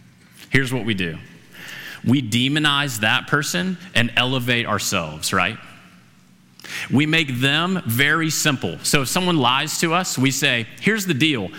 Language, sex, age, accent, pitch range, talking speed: English, male, 30-49, American, 105-155 Hz, 145 wpm